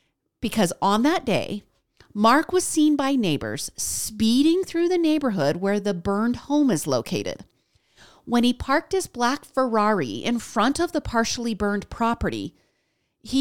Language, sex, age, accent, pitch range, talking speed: English, female, 40-59, American, 200-285 Hz, 150 wpm